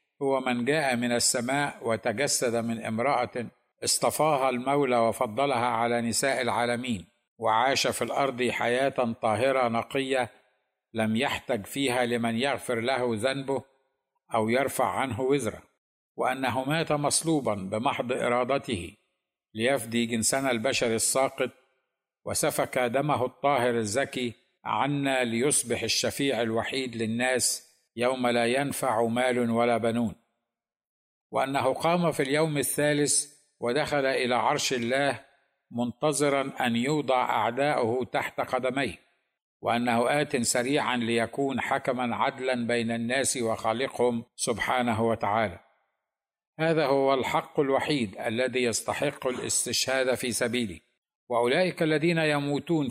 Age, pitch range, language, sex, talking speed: 60-79, 120-140 Hz, Arabic, male, 105 wpm